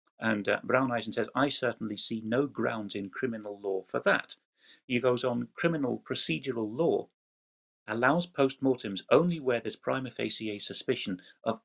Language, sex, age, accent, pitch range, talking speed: English, male, 40-59, British, 115-140 Hz, 155 wpm